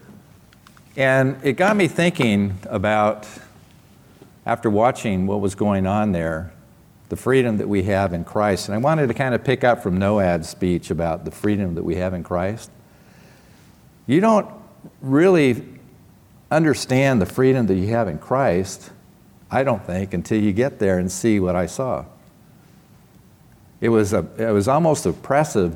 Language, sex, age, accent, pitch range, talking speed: English, male, 50-69, American, 95-115 Hz, 155 wpm